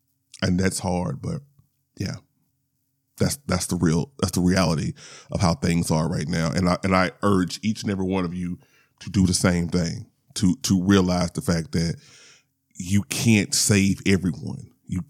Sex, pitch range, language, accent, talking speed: male, 95-135 Hz, English, American, 180 wpm